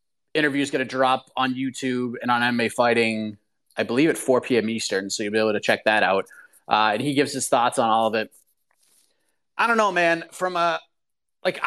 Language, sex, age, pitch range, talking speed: English, male, 30-49, 130-155 Hz, 215 wpm